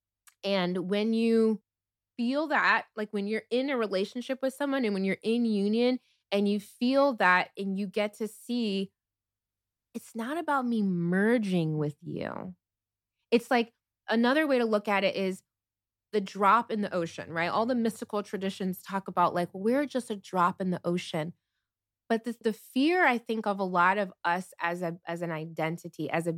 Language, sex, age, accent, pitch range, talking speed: English, female, 20-39, American, 170-225 Hz, 180 wpm